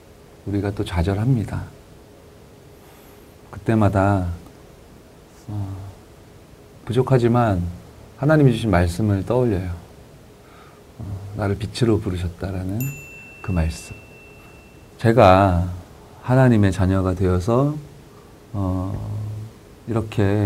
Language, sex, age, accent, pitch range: Korean, male, 40-59, native, 95-120 Hz